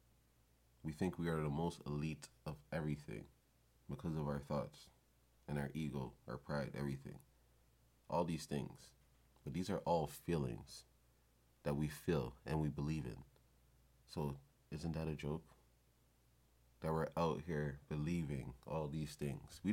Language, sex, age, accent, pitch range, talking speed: English, male, 30-49, American, 65-100 Hz, 145 wpm